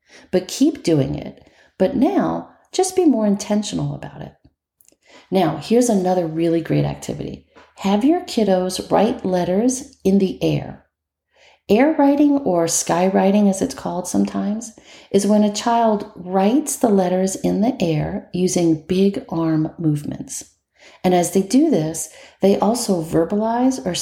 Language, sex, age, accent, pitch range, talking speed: English, female, 40-59, American, 160-225 Hz, 145 wpm